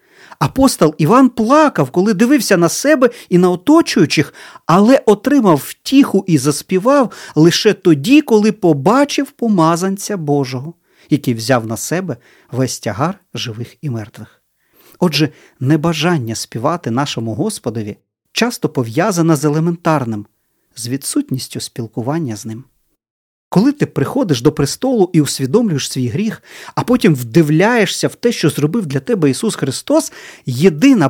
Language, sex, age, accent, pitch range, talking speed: Ukrainian, male, 40-59, native, 130-200 Hz, 125 wpm